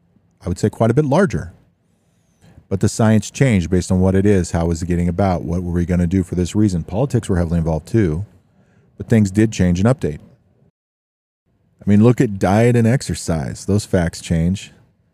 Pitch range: 90-105 Hz